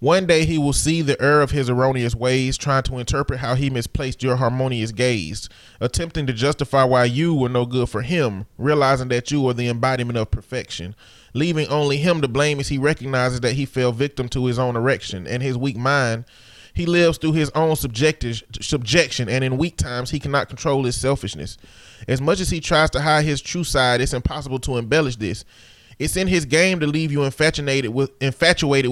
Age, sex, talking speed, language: 30-49, male, 205 wpm, English